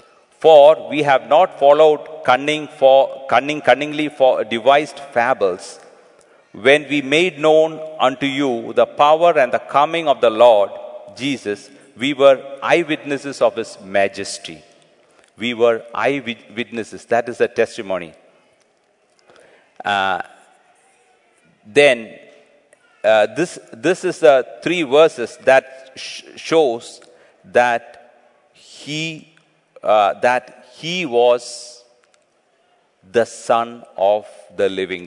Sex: male